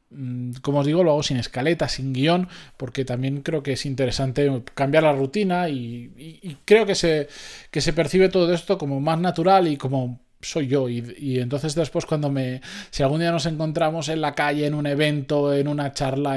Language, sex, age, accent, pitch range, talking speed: Spanish, male, 20-39, Spanish, 140-180 Hz, 200 wpm